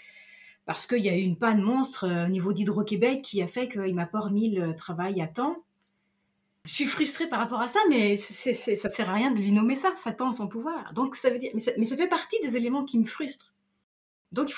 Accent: French